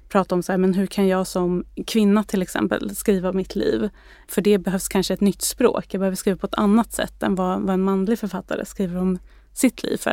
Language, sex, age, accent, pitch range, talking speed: Swedish, female, 20-39, native, 185-205 Hz, 235 wpm